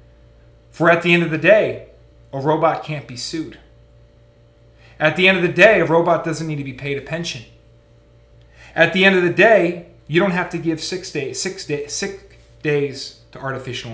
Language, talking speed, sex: English, 200 wpm, male